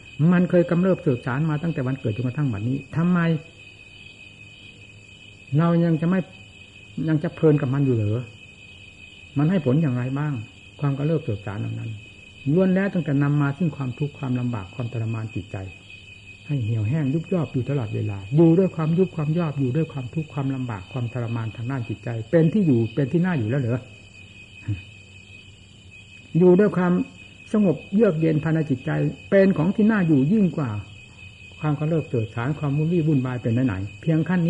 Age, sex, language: 60-79, male, Thai